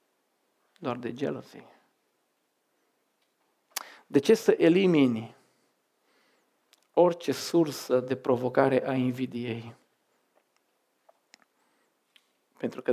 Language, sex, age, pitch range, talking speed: Romanian, male, 50-69, 130-185 Hz, 70 wpm